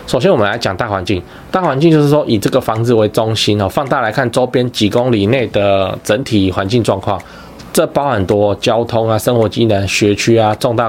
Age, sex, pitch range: 20-39, male, 100-130 Hz